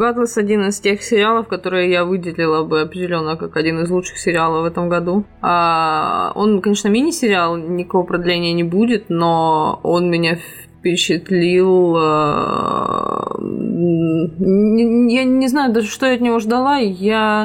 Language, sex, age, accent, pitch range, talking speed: Russian, female, 20-39, native, 165-200 Hz, 130 wpm